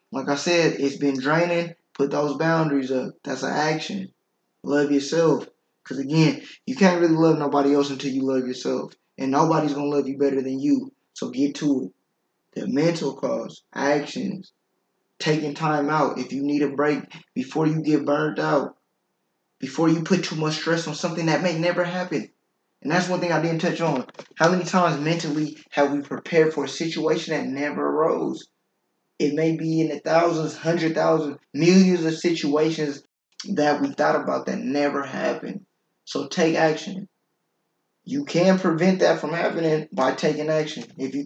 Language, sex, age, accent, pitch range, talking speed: English, male, 20-39, American, 145-175 Hz, 180 wpm